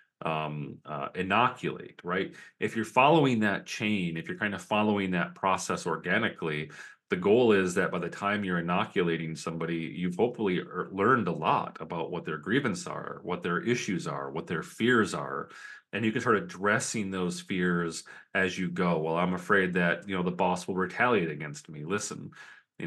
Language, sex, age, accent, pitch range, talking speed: English, male, 30-49, American, 85-105 Hz, 185 wpm